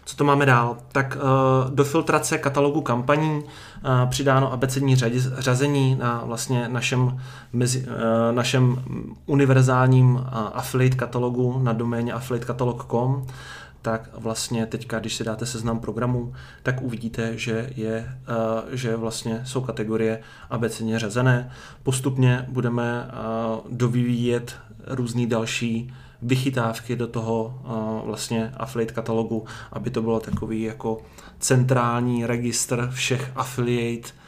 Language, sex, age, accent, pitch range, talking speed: Czech, male, 30-49, native, 115-125 Hz, 110 wpm